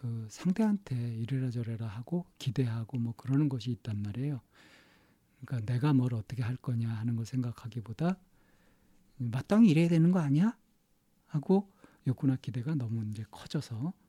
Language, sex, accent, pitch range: Korean, male, native, 125-160 Hz